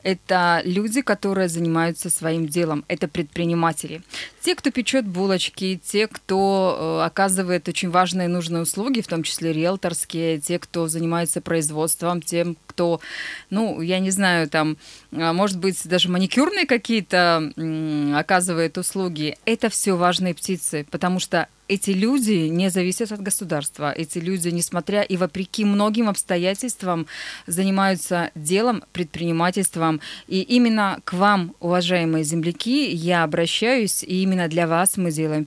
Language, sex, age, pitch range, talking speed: Russian, female, 20-39, 165-195 Hz, 135 wpm